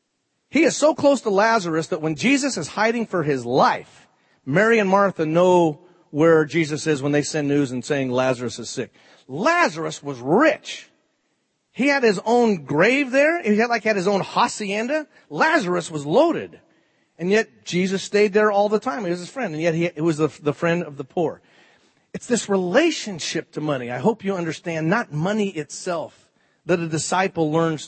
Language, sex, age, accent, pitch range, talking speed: English, male, 40-59, American, 150-210 Hz, 190 wpm